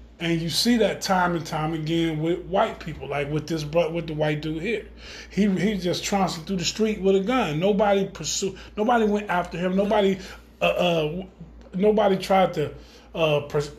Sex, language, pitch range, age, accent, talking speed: male, English, 155-200 Hz, 20-39, American, 190 wpm